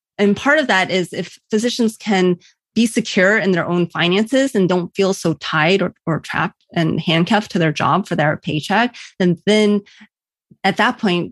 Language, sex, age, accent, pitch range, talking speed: English, female, 30-49, American, 175-210 Hz, 185 wpm